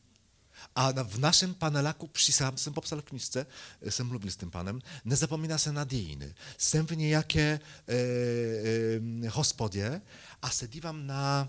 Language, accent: Czech, Polish